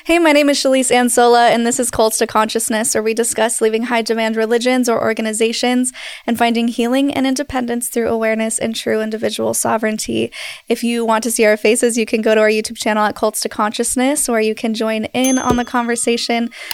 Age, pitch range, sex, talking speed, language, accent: 10-29, 220-250 Hz, female, 210 wpm, English, American